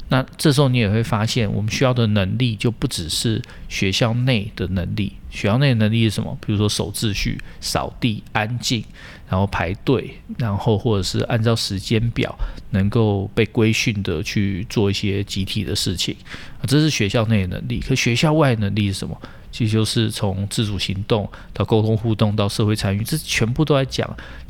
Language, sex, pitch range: Chinese, male, 100-125 Hz